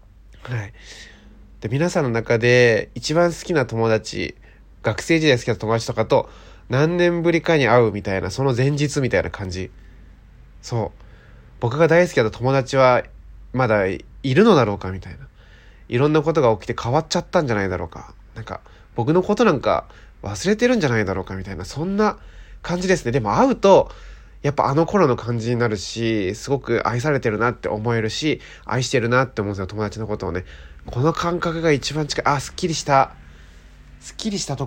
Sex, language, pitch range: male, Japanese, 100-145 Hz